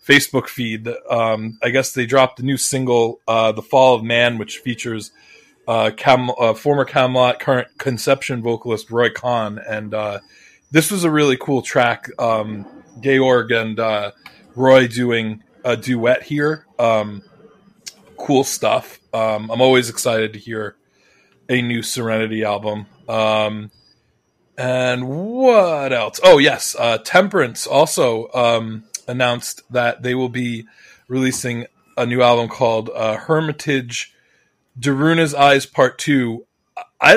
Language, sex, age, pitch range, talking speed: English, male, 20-39, 110-130 Hz, 135 wpm